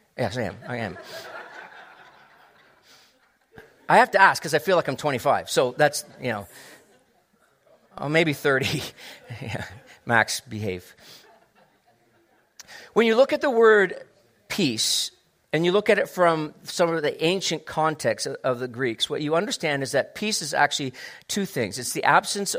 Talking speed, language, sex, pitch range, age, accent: 155 wpm, English, male, 145-195 Hz, 40-59, American